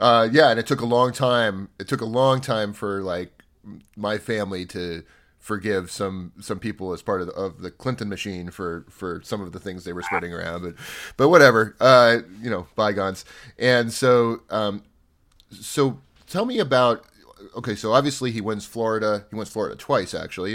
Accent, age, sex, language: American, 30-49, male, English